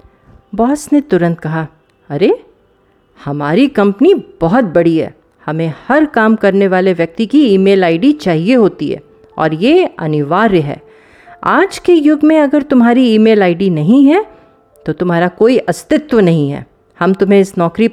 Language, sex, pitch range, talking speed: Hindi, female, 160-240 Hz, 155 wpm